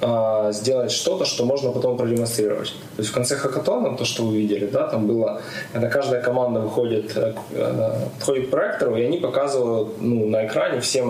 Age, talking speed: 20-39, 175 wpm